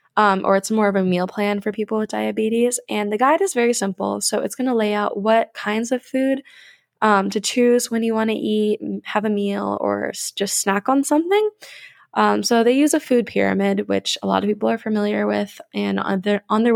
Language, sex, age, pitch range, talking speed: English, female, 10-29, 195-235 Hz, 225 wpm